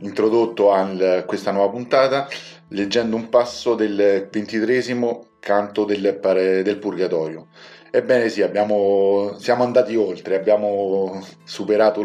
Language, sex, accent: Italian, male, native